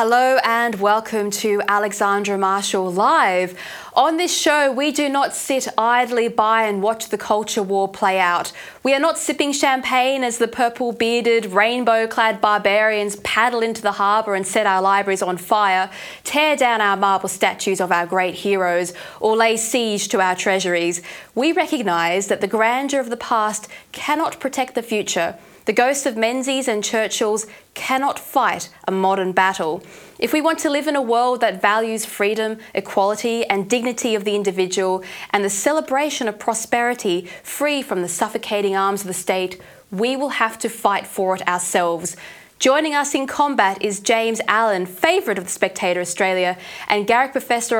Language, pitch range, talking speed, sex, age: English, 195-245 Hz, 170 wpm, female, 20-39